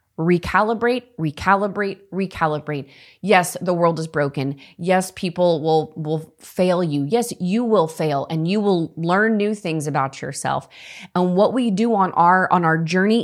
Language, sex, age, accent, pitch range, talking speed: English, female, 20-39, American, 160-220 Hz, 160 wpm